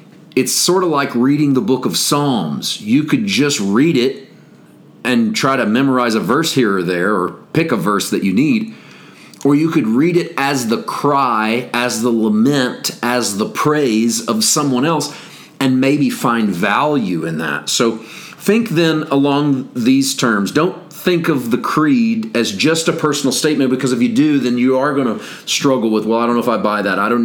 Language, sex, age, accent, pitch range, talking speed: English, male, 40-59, American, 125-160 Hz, 200 wpm